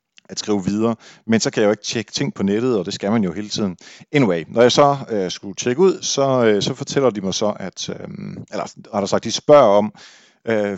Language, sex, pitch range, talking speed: Danish, male, 105-135 Hz, 250 wpm